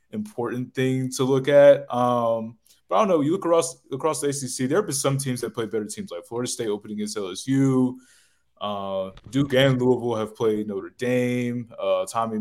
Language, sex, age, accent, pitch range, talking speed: English, male, 20-39, American, 110-135 Hz, 200 wpm